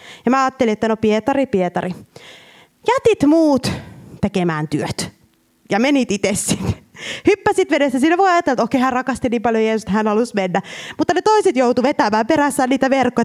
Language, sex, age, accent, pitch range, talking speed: Finnish, female, 20-39, native, 195-330 Hz, 175 wpm